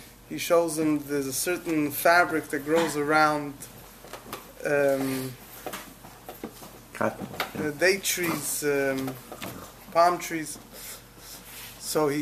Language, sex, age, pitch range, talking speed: English, male, 20-39, 150-195 Hz, 95 wpm